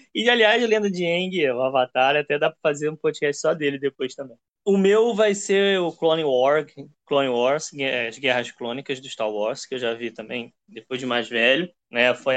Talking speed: 220 wpm